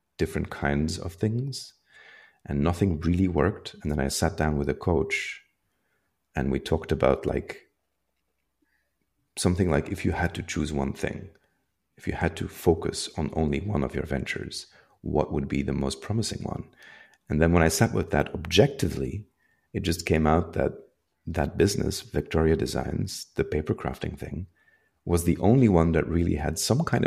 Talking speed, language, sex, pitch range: 175 wpm, English, male, 70-95 Hz